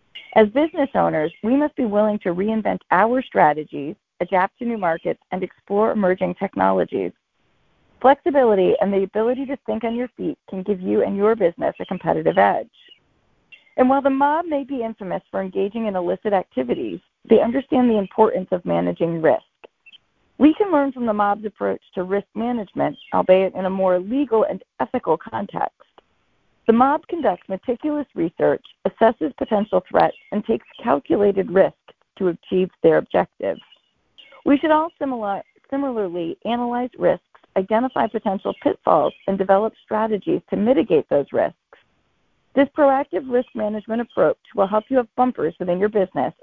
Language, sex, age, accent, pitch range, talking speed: English, female, 30-49, American, 190-255 Hz, 155 wpm